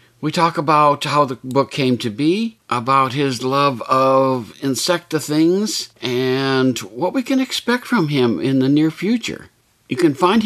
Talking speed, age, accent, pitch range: 165 wpm, 60-79, American, 125-175 Hz